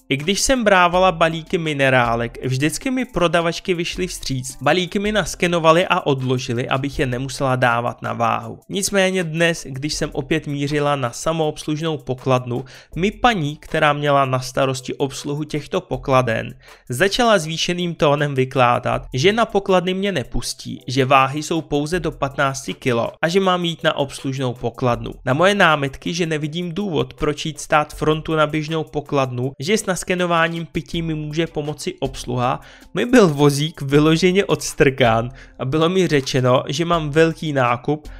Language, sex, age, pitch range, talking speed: Czech, male, 20-39, 130-170 Hz, 150 wpm